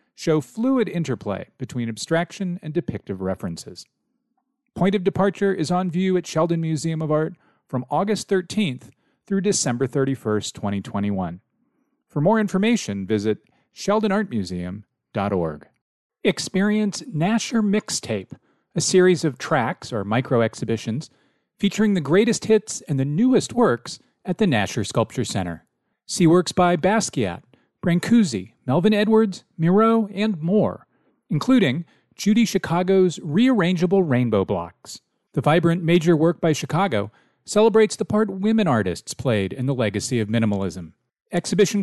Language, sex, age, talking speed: English, male, 40-59, 125 wpm